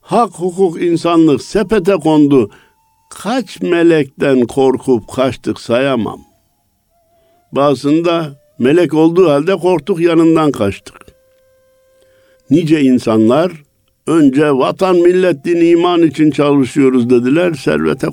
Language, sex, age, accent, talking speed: Turkish, male, 60-79, native, 95 wpm